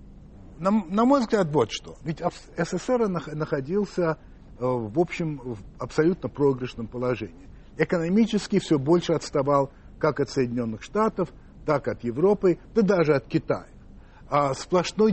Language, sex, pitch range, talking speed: Russian, male, 125-175 Hz, 125 wpm